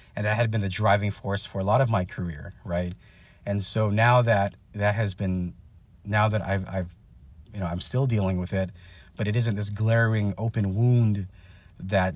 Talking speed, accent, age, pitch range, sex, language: 195 wpm, American, 30-49, 95-110 Hz, male, English